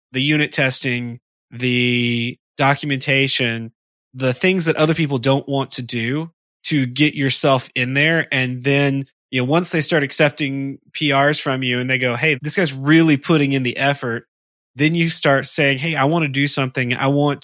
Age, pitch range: 20-39, 120-150 Hz